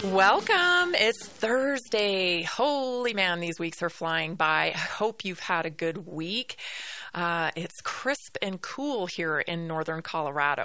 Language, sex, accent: English, female, American